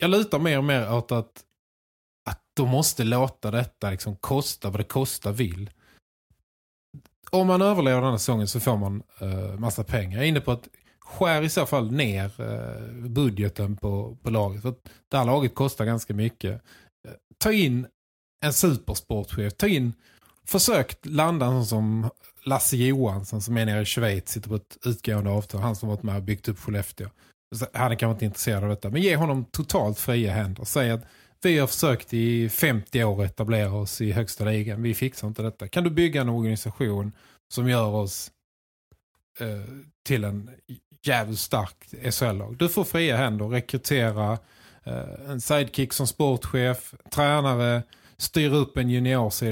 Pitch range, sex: 105-135 Hz, male